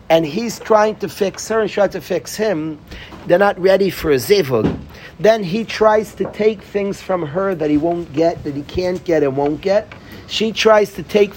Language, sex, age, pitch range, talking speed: English, male, 50-69, 155-210 Hz, 210 wpm